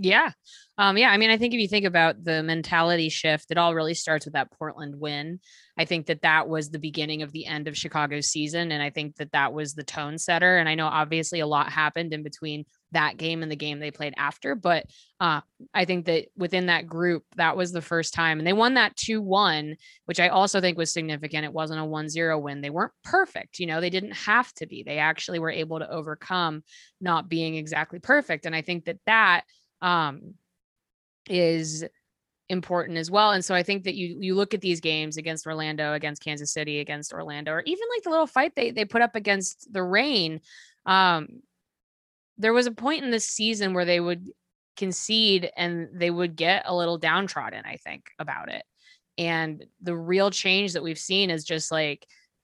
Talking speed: 215 wpm